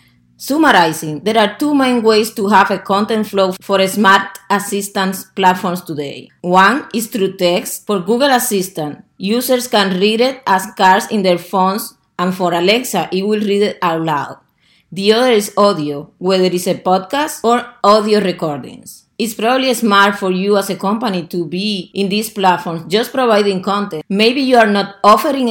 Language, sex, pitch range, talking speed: English, female, 180-220 Hz, 170 wpm